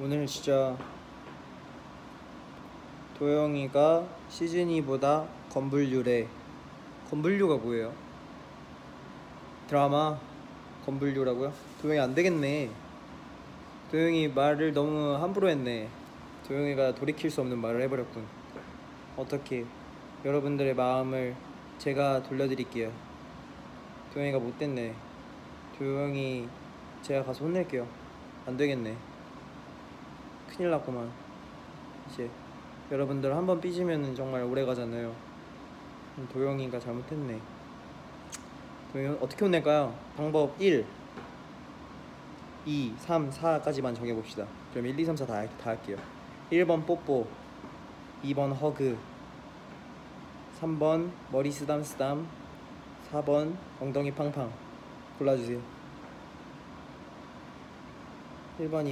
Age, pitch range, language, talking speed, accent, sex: 20-39, 130-150 Hz, English, 75 wpm, Korean, male